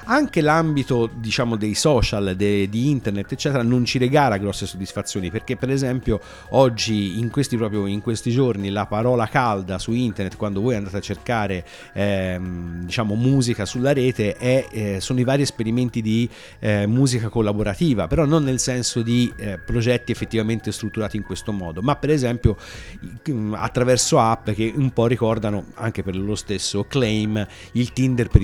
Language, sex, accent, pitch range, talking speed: Italian, male, native, 105-130 Hz, 165 wpm